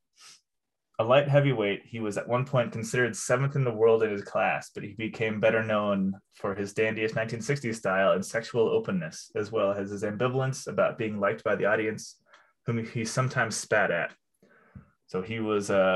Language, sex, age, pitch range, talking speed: English, male, 20-39, 105-125 Hz, 185 wpm